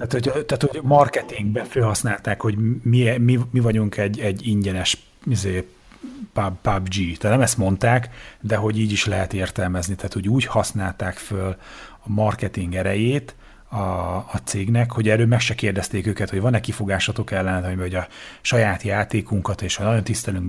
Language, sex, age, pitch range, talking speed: Hungarian, male, 30-49, 95-110 Hz, 160 wpm